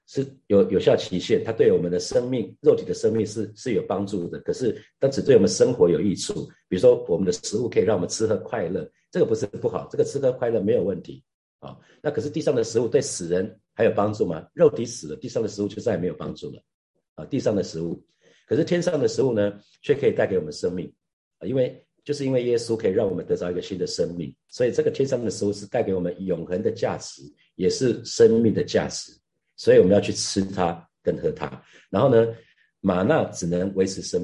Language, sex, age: Chinese, male, 50-69